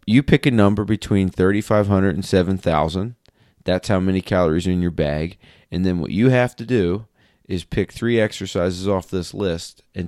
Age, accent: 30-49, American